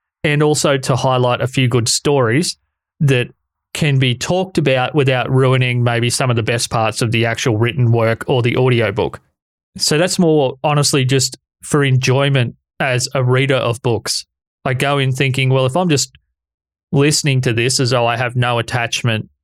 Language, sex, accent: English, male, Australian